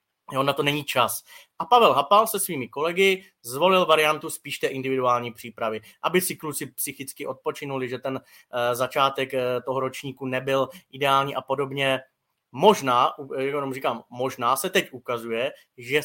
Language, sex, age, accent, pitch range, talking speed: Czech, male, 20-39, native, 130-155 Hz, 155 wpm